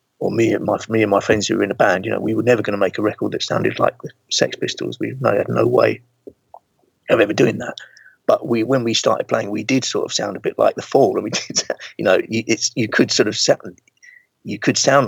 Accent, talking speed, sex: British, 270 wpm, male